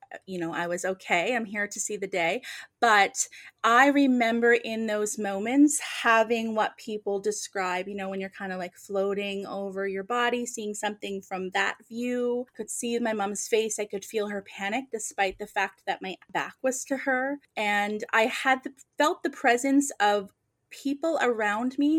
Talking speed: 180 wpm